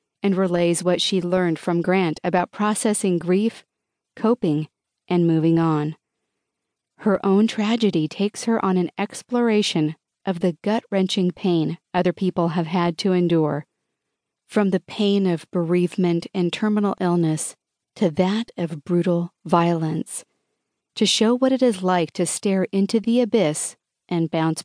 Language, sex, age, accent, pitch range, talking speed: English, female, 40-59, American, 170-205 Hz, 140 wpm